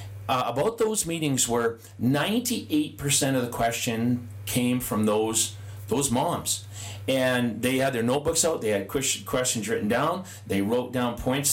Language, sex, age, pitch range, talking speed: English, male, 40-59, 105-145 Hz, 150 wpm